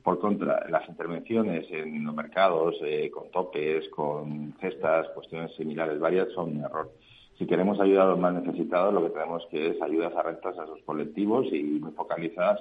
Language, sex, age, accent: Spanish, male, 50-69, Spanish